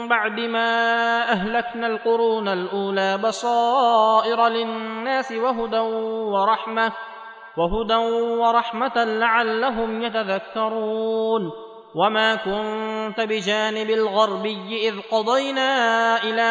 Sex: male